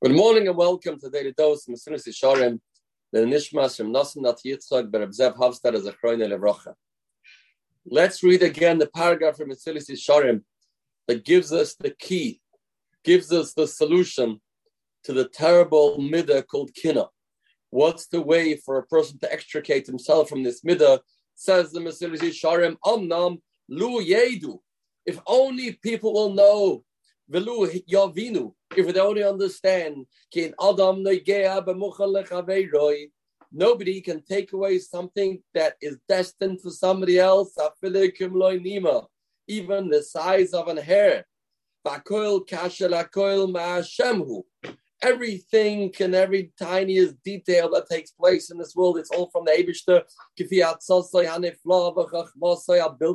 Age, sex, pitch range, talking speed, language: 40-59, male, 160-195 Hz, 110 wpm, English